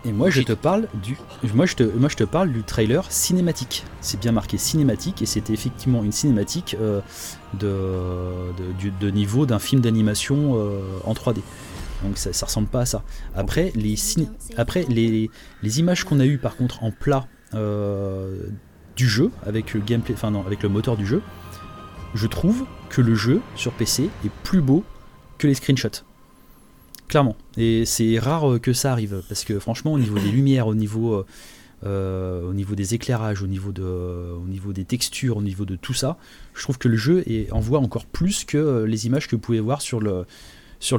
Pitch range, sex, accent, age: 100-130 Hz, male, French, 30-49